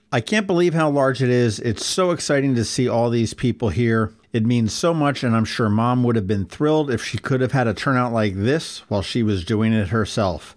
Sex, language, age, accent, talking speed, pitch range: male, English, 50-69, American, 245 wpm, 105-135 Hz